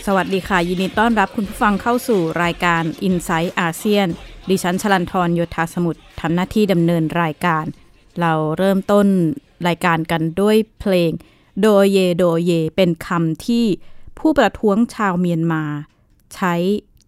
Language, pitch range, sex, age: Thai, 165-200 Hz, female, 20-39